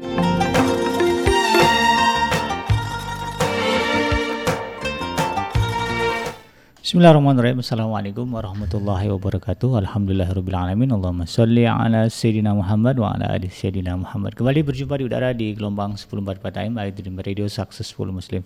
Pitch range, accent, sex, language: 95-125 Hz, native, male, Indonesian